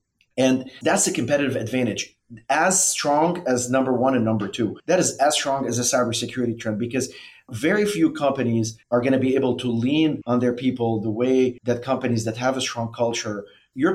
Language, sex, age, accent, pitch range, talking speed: English, male, 30-49, Canadian, 115-135 Hz, 195 wpm